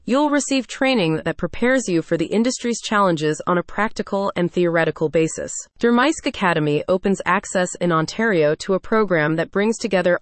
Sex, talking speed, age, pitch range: female, 165 wpm, 30-49, 170-230 Hz